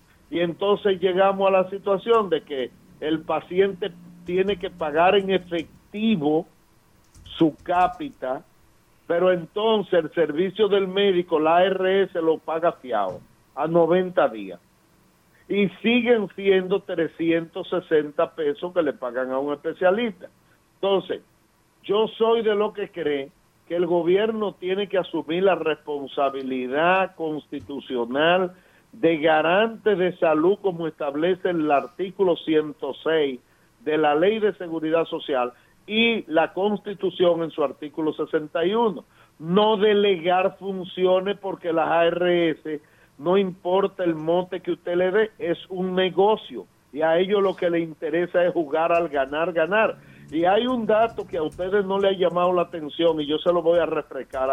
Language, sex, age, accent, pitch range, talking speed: Spanish, male, 50-69, American, 155-195 Hz, 140 wpm